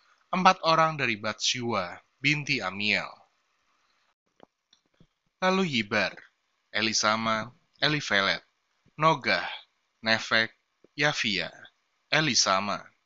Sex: male